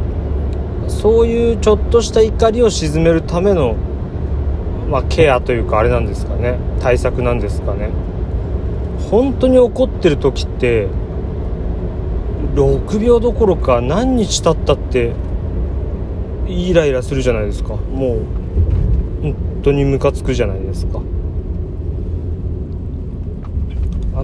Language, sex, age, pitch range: Japanese, male, 30-49, 75-95 Hz